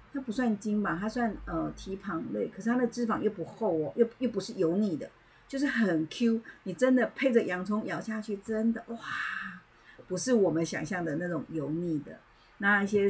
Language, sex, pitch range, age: Chinese, female, 160-215 Hz, 50-69